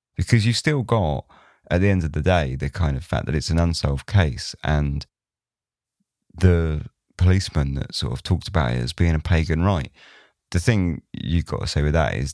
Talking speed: 205 wpm